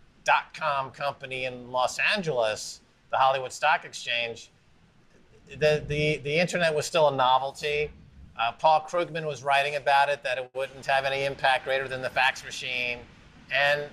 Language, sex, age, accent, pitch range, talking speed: English, male, 50-69, American, 145-180 Hz, 155 wpm